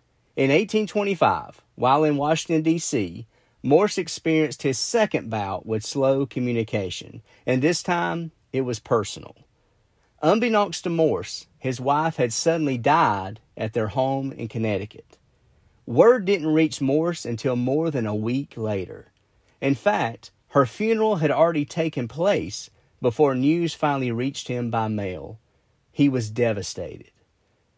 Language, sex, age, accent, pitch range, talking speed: English, male, 40-59, American, 115-160 Hz, 130 wpm